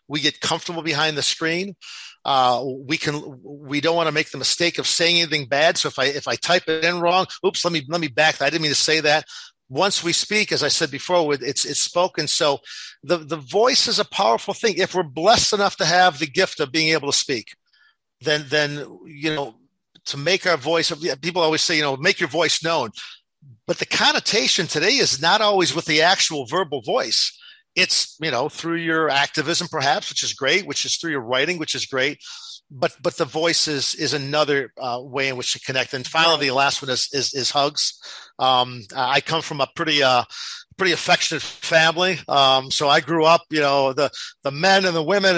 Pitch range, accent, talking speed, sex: 145-180 Hz, American, 215 wpm, male